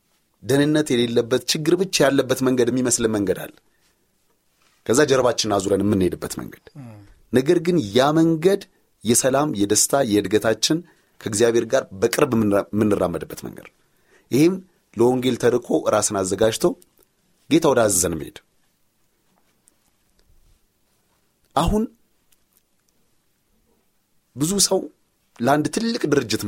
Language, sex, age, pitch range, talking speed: Amharic, male, 30-49, 110-145 Hz, 90 wpm